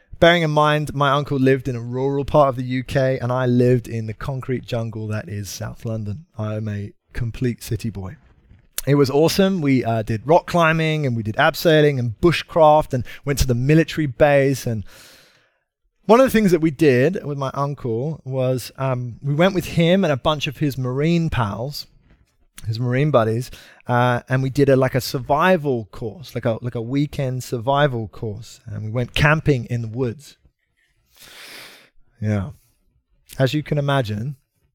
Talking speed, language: 180 wpm, English